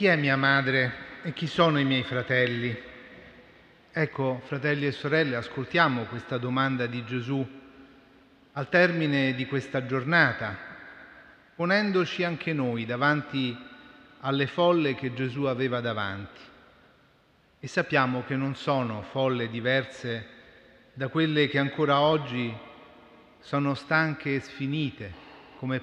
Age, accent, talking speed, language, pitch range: 30-49, native, 120 wpm, Italian, 125-155 Hz